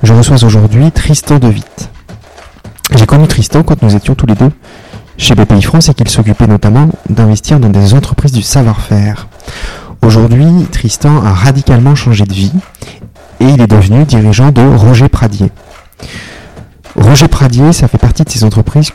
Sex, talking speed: male, 160 wpm